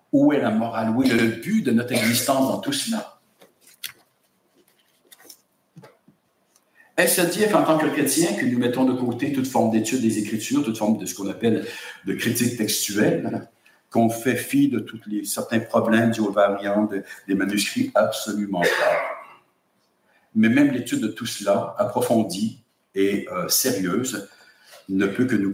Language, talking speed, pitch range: English, 160 wpm, 100-130 Hz